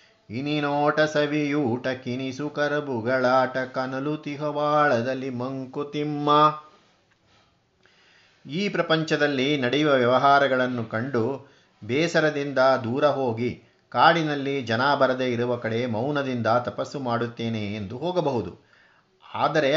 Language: Kannada